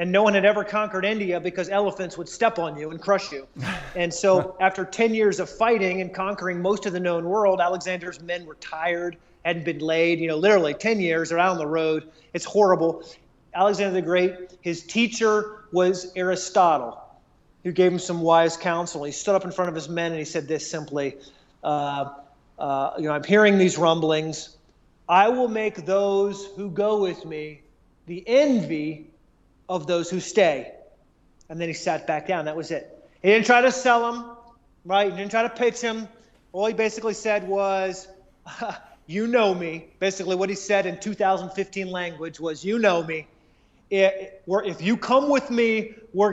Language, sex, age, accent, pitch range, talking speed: English, male, 30-49, American, 165-205 Hz, 185 wpm